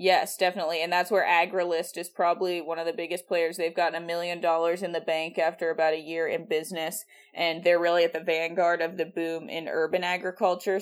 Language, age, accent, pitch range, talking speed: English, 20-39, American, 170-205 Hz, 215 wpm